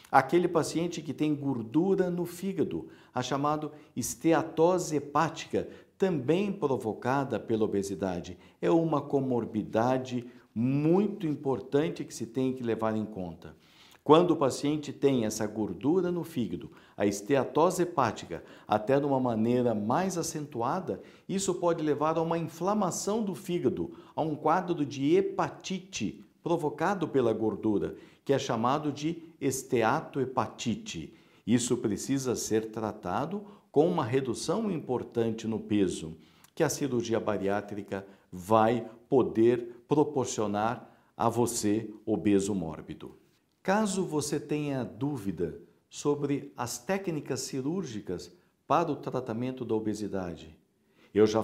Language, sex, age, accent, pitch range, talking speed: Portuguese, male, 50-69, Brazilian, 110-160 Hz, 120 wpm